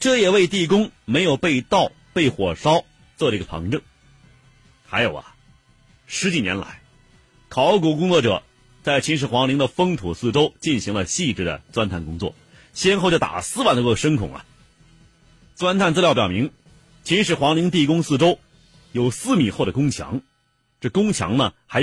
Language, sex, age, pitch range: Chinese, male, 40-59, 115-175 Hz